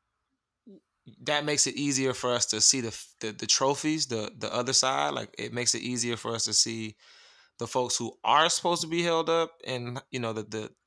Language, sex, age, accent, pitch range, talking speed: English, male, 20-39, American, 110-130 Hz, 210 wpm